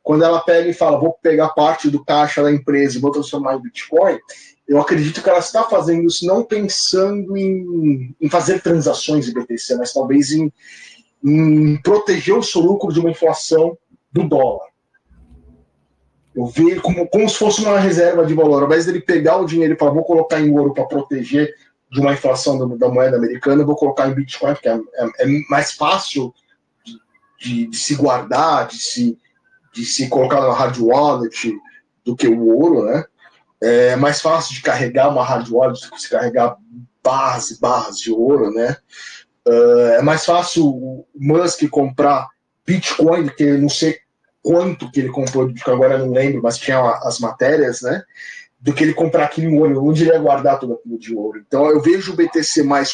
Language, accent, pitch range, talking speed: Portuguese, Brazilian, 135-175 Hz, 190 wpm